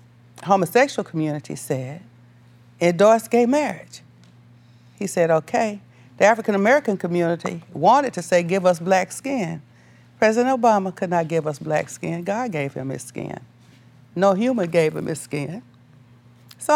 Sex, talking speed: female, 140 wpm